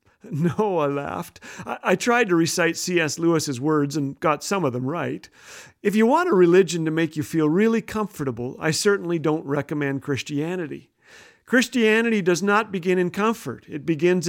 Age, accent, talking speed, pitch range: 50-69, American, 170 wpm, 150-200 Hz